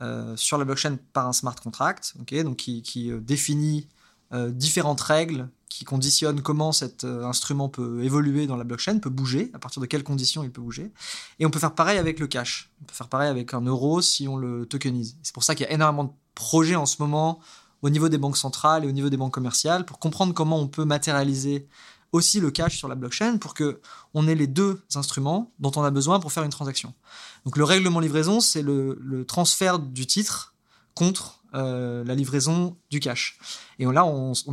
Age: 20-39